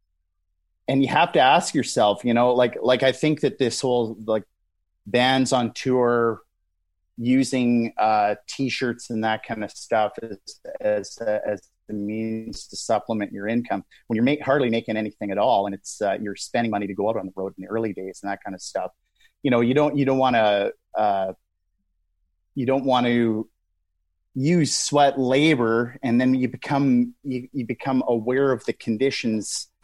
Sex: male